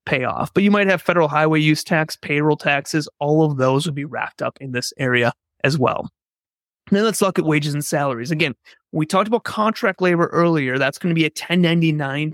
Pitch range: 145-170 Hz